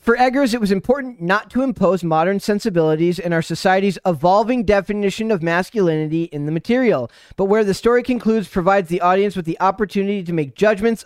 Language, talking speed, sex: English, 185 wpm, male